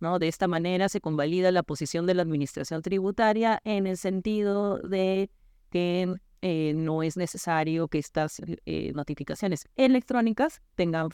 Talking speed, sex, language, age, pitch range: 145 wpm, female, Spanish, 30-49, 155-185 Hz